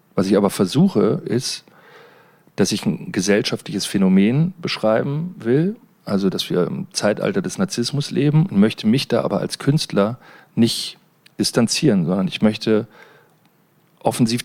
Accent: German